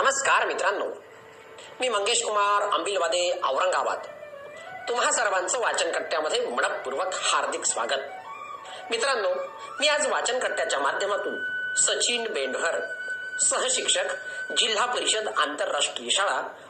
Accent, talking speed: native, 60 wpm